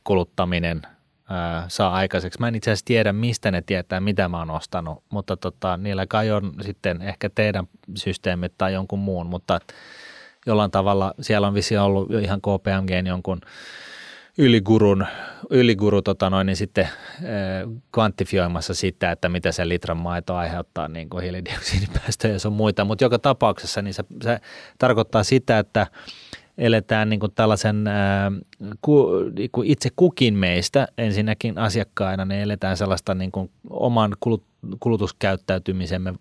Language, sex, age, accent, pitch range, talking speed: Finnish, male, 30-49, native, 95-110 Hz, 140 wpm